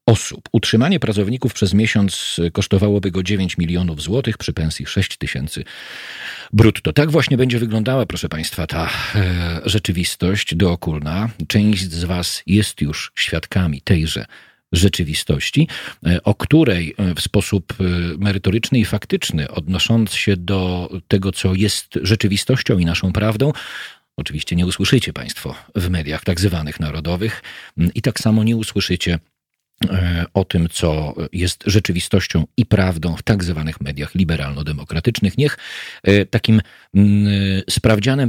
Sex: male